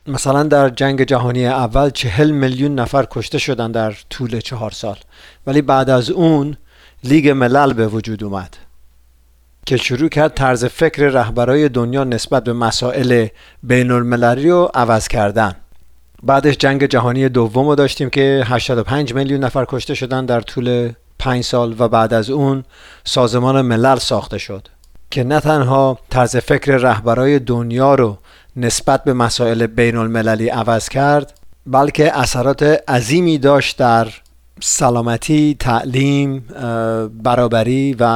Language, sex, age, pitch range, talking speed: Persian, male, 50-69, 115-135 Hz, 135 wpm